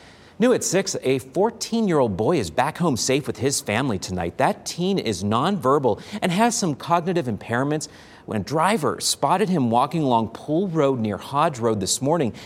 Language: English